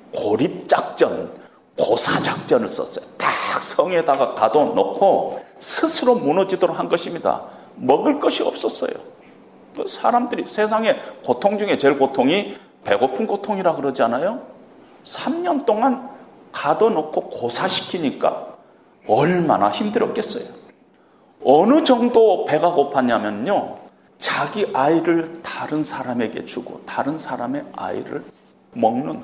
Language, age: Korean, 40-59